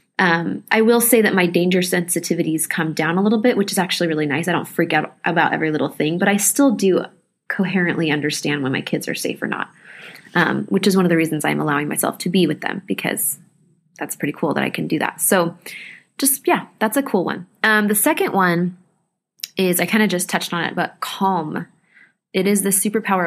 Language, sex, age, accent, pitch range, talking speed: English, female, 20-39, American, 170-215 Hz, 225 wpm